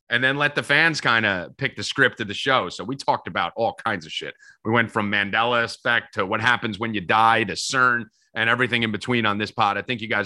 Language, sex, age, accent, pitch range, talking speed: English, male, 30-49, American, 100-130 Hz, 265 wpm